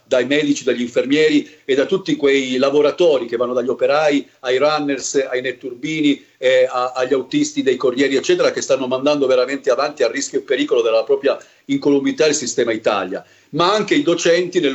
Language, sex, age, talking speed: Italian, male, 40-59, 175 wpm